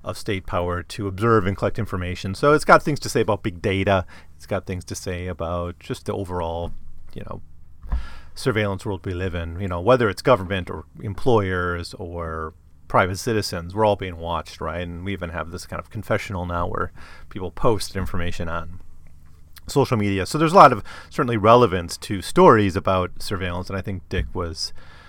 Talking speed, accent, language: 190 wpm, American, English